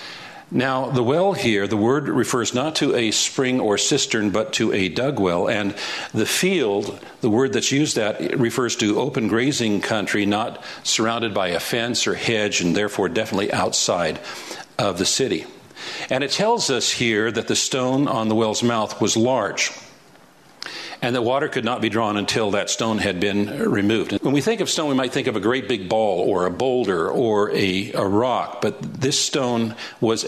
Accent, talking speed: American, 190 wpm